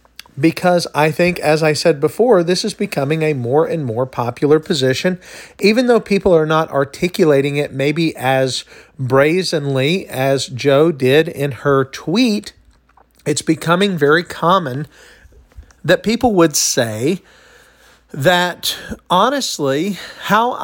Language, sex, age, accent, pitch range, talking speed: English, male, 50-69, American, 135-185 Hz, 125 wpm